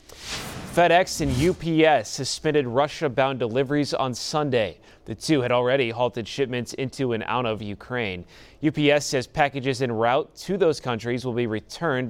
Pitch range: 115-145 Hz